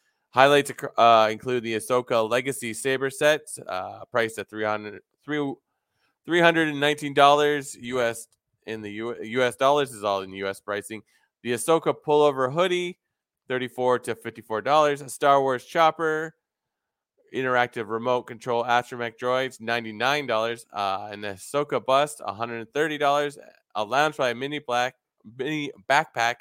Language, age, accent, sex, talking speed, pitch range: English, 20-39, American, male, 140 wpm, 115-145 Hz